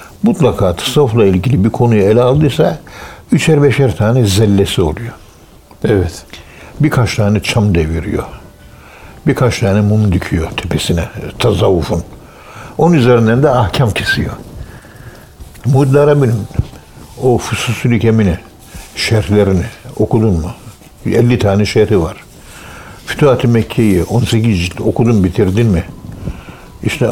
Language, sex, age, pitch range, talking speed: Turkish, male, 60-79, 95-120 Hz, 105 wpm